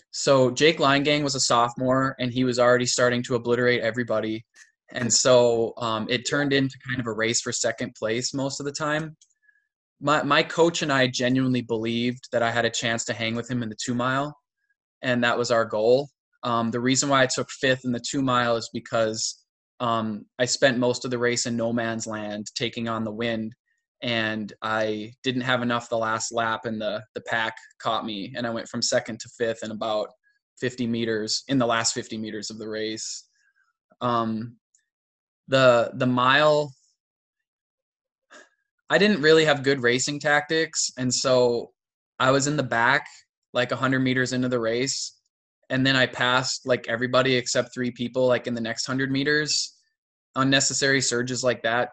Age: 20-39